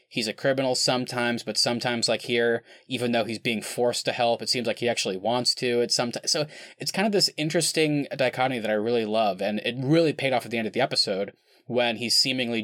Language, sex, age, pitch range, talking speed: English, male, 20-39, 115-145 Hz, 235 wpm